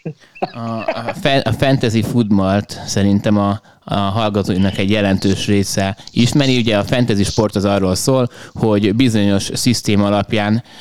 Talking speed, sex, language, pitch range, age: 135 wpm, male, Hungarian, 100-115 Hz, 20-39